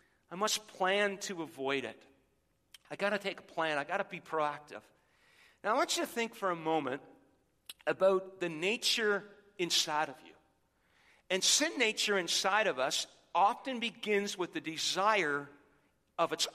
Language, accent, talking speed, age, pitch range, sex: English, American, 165 wpm, 50-69, 160-205 Hz, male